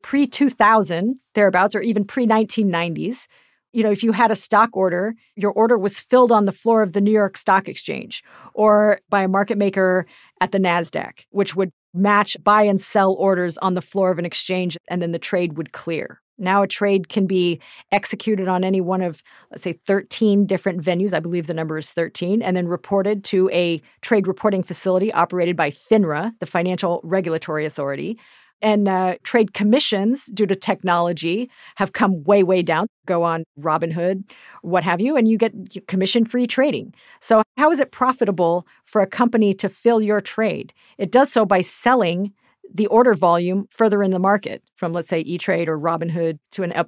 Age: 40-59